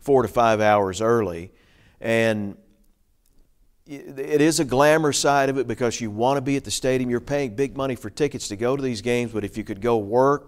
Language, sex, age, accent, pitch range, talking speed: English, male, 50-69, American, 105-130 Hz, 220 wpm